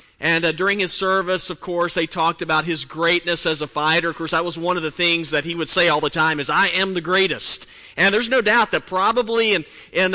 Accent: American